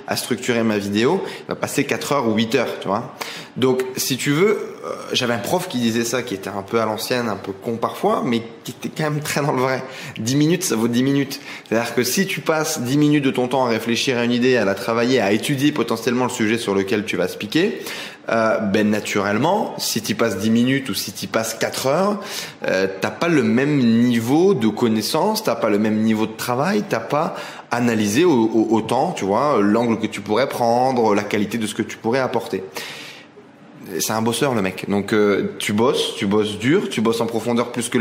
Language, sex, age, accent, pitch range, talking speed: French, male, 20-39, French, 110-135 Hz, 230 wpm